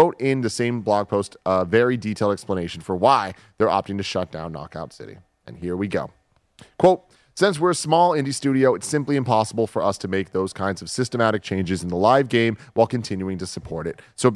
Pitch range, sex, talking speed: 100-130 Hz, male, 215 wpm